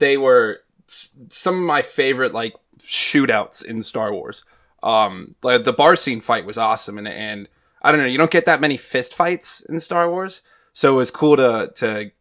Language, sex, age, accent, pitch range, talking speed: English, male, 20-39, American, 120-160 Hz, 190 wpm